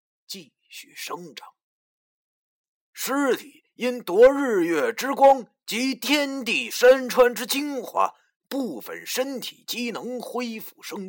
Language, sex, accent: Chinese, male, native